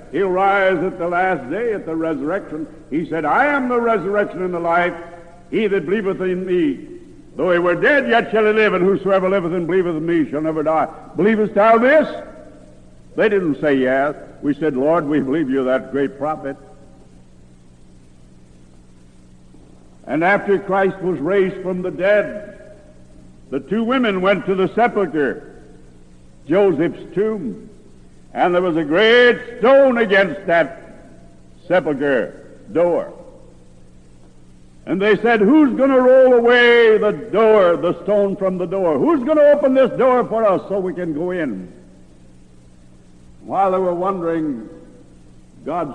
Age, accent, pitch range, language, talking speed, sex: 60-79, American, 125-200 Hz, English, 155 wpm, male